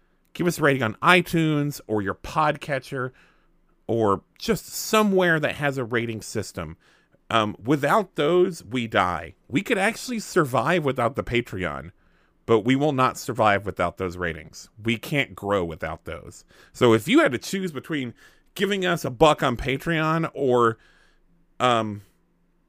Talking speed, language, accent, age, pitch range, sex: 150 wpm, English, American, 30-49, 110-155 Hz, male